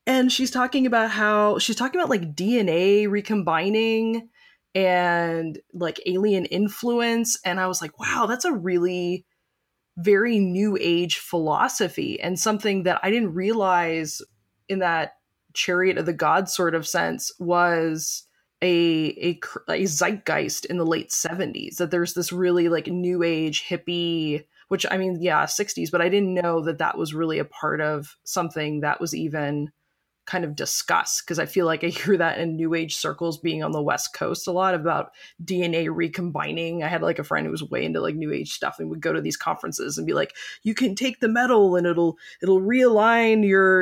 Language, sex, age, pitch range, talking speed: English, female, 20-39, 165-205 Hz, 185 wpm